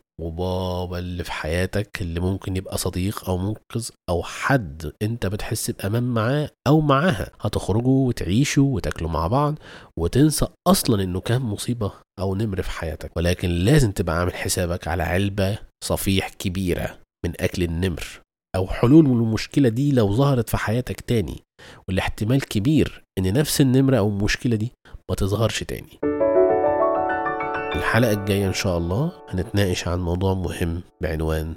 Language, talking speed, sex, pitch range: Arabic, 145 wpm, male, 90-120 Hz